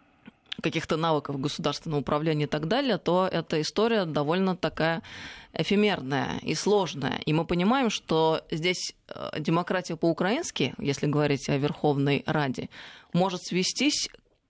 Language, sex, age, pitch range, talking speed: Russian, female, 20-39, 155-200 Hz, 120 wpm